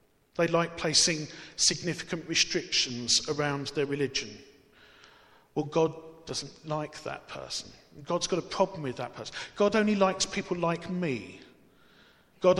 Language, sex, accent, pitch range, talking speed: English, male, British, 145-175 Hz, 135 wpm